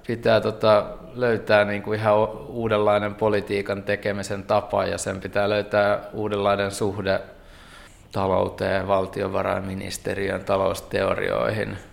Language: Finnish